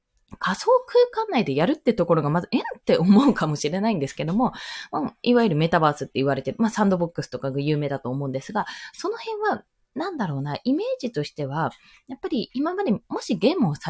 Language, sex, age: Japanese, female, 20-39